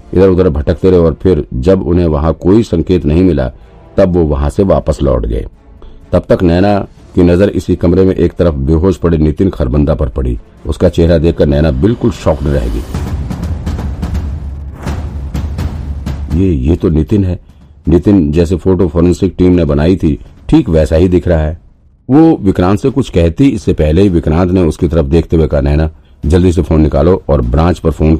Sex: male